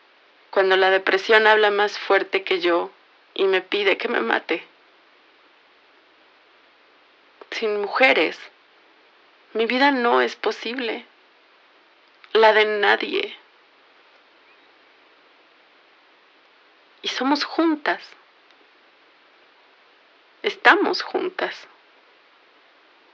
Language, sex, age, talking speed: Spanish, female, 30-49, 75 wpm